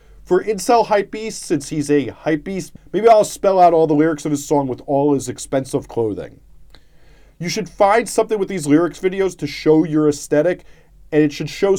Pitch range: 145-185 Hz